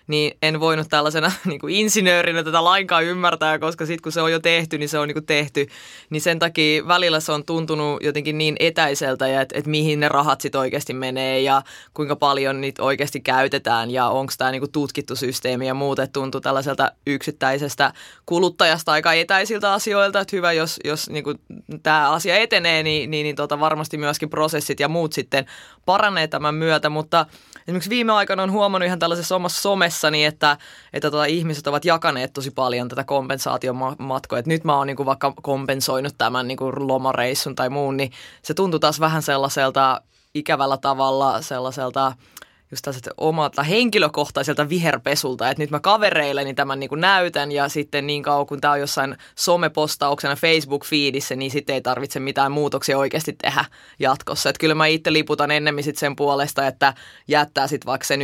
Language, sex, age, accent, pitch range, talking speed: Finnish, female, 20-39, native, 135-160 Hz, 170 wpm